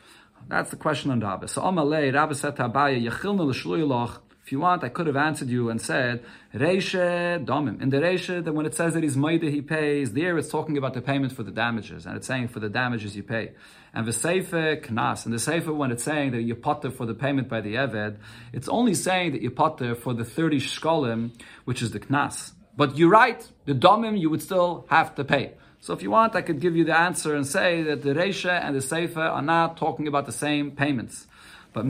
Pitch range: 125-165 Hz